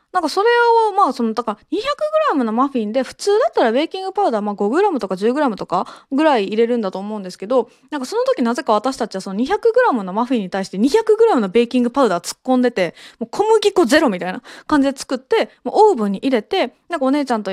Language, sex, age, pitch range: Japanese, female, 20-39, 215-335 Hz